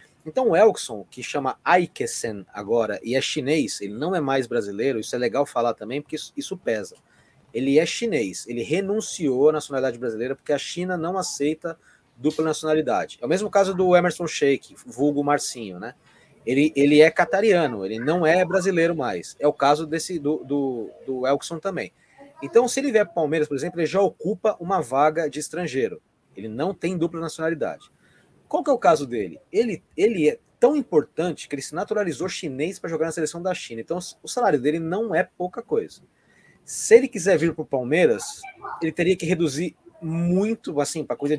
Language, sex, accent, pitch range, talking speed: Portuguese, male, Brazilian, 145-190 Hz, 190 wpm